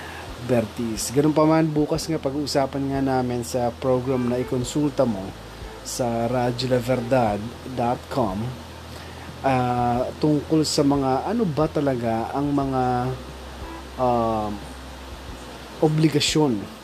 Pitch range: 110-145 Hz